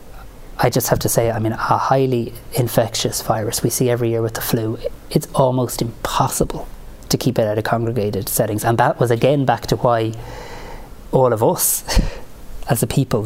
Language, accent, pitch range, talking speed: English, Irish, 110-135 Hz, 185 wpm